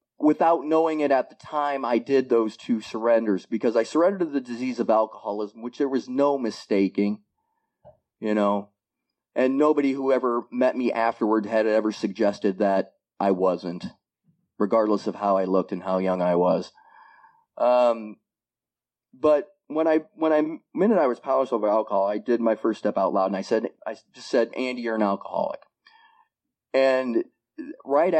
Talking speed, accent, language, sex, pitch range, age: 170 wpm, American, English, male, 110-155 Hz, 30-49